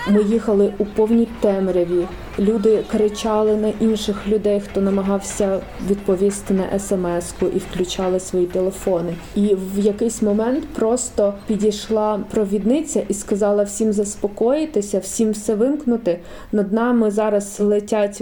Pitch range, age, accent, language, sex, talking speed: 200-225 Hz, 20-39, native, Ukrainian, female, 120 wpm